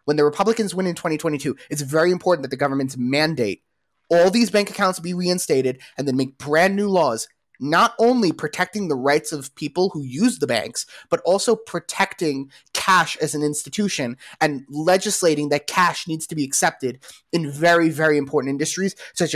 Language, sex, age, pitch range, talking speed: English, male, 20-39, 135-170 Hz, 175 wpm